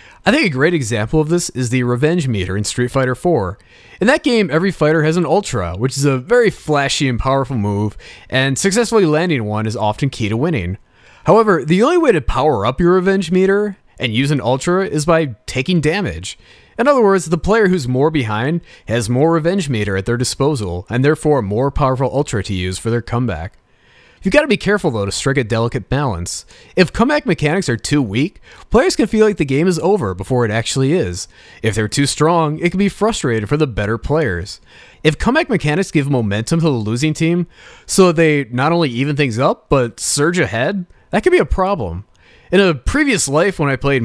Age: 30-49